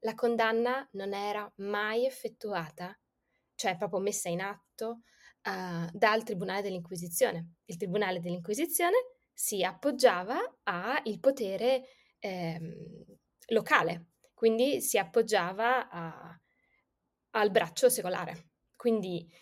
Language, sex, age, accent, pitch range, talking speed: Italian, female, 20-39, native, 195-280 Hz, 95 wpm